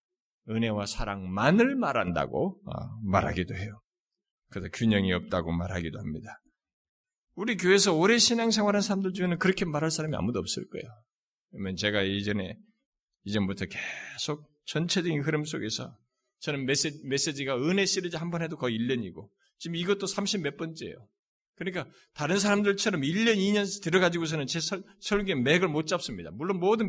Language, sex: Korean, male